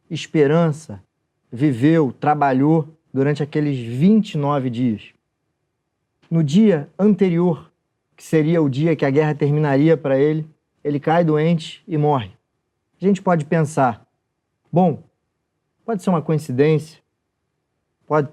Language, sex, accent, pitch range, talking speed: Portuguese, male, Brazilian, 135-165 Hz, 115 wpm